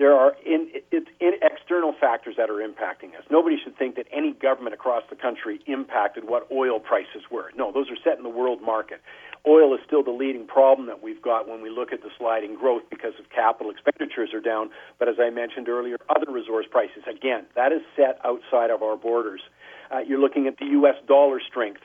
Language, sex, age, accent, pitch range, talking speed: English, male, 50-69, American, 120-160 Hz, 210 wpm